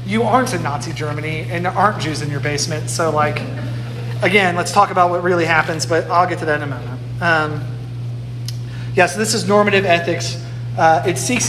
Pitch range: 120-165 Hz